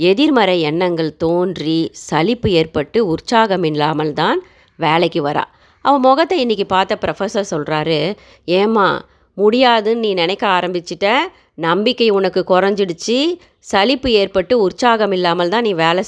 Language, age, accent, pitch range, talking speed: Tamil, 30-49, native, 165-215 Hz, 110 wpm